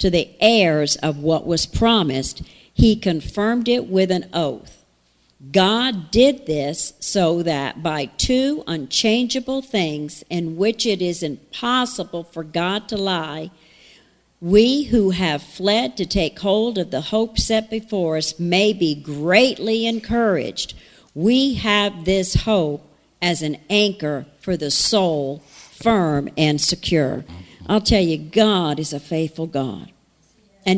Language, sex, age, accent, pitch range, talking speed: English, female, 50-69, American, 155-215 Hz, 135 wpm